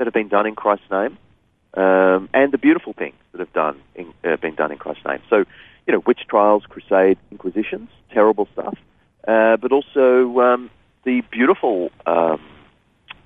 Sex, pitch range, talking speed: male, 90-125 Hz, 165 wpm